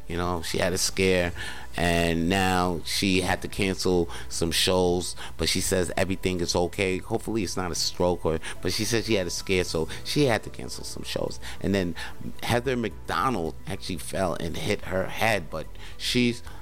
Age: 30-49